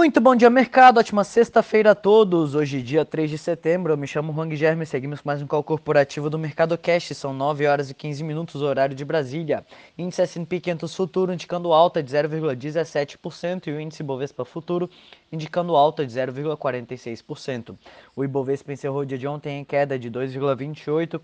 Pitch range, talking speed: 135-160 Hz, 185 wpm